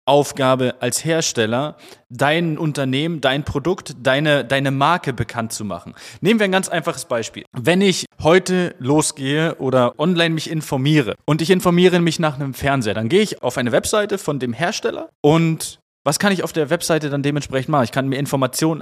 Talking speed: 180 wpm